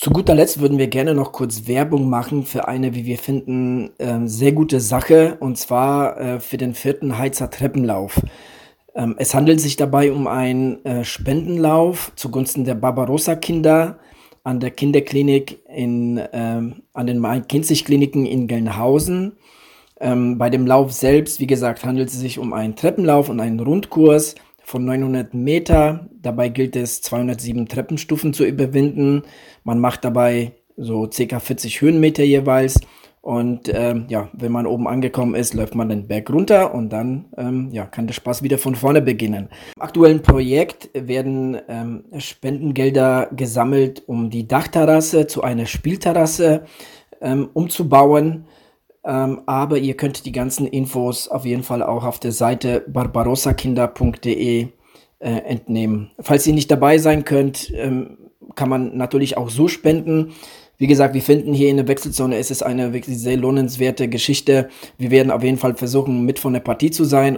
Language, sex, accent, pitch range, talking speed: German, male, German, 120-145 Hz, 155 wpm